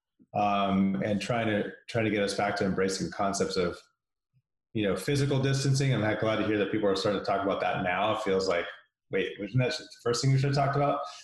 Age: 30-49